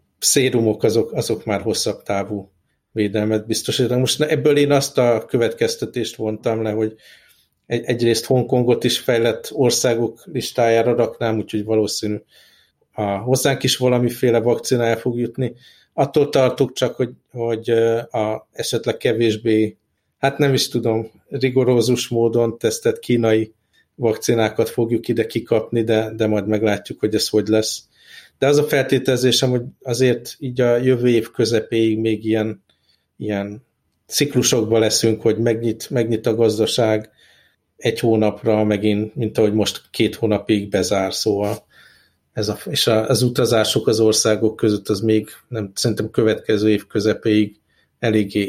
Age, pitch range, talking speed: 50-69, 110-120 Hz, 135 wpm